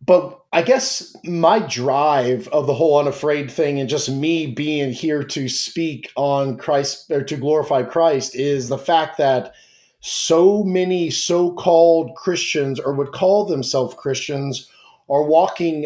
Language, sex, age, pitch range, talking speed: English, male, 30-49, 140-165 Hz, 145 wpm